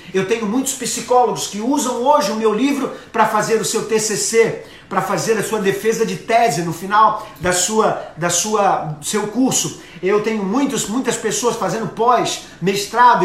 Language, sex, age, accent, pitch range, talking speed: Portuguese, male, 40-59, Brazilian, 200-250 Hz, 170 wpm